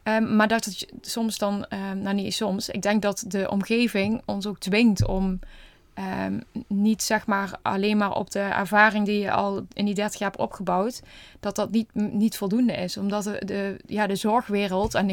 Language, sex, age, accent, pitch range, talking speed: Dutch, female, 20-39, Dutch, 195-215 Hz, 200 wpm